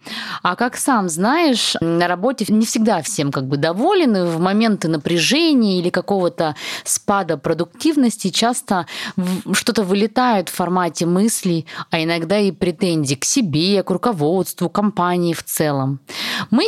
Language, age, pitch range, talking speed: Russian, 20-39, 160-225 Hz, 135 wpm